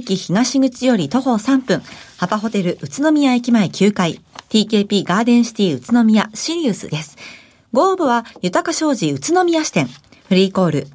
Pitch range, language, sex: 190-260 Hz, Japanese, female